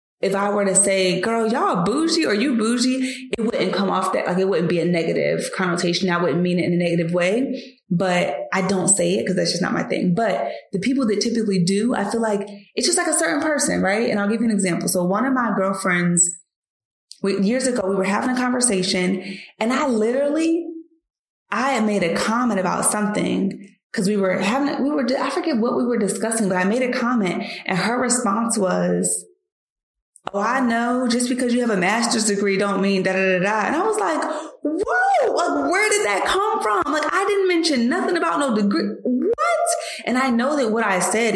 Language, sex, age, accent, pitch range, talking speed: English, female, 20-39, American, 190-255 Hz, 215 wpm